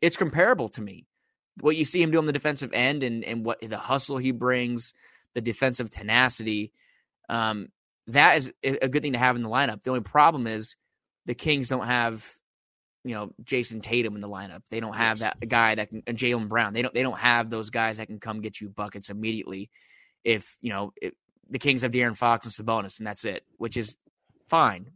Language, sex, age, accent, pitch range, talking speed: English, male, 20-39, American, 110-130 Hz, 210 wpm